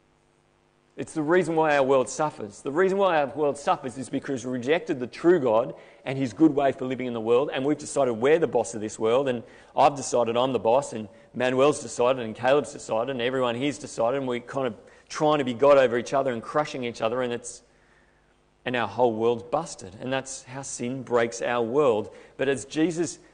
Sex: male